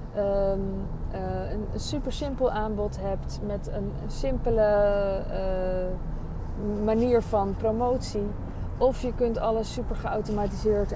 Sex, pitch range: female, 185-225 Hz